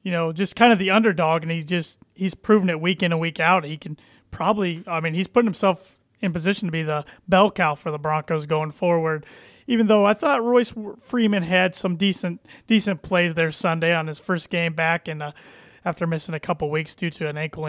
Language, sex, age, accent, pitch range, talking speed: English, male, 20-39, American, 160-190 Hz, 225 wpm